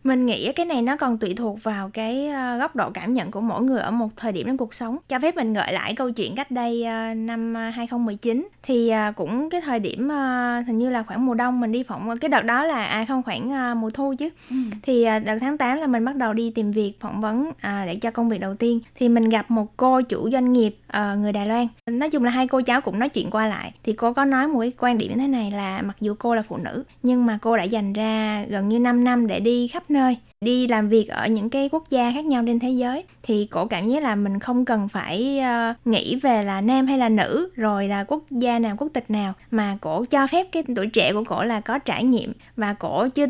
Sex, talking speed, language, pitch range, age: female, 260 wpm, Vietnamese, 220-260 Hz, 10-29